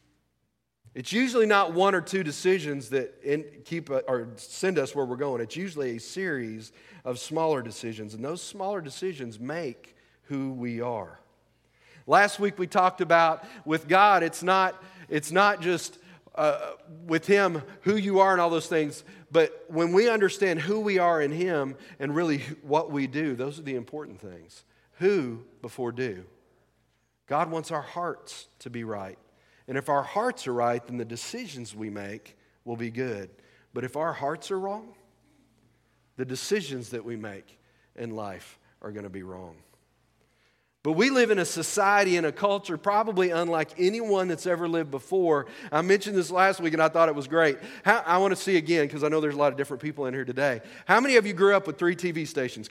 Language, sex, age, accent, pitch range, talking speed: English, male, 40-59, American, 130-185 Hz, 190 wpm